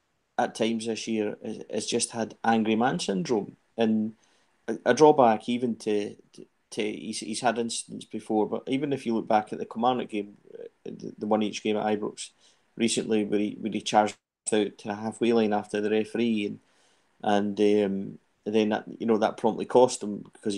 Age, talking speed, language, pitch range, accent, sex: 30-49, 190 wpm, English, 105-115 Hz, British, male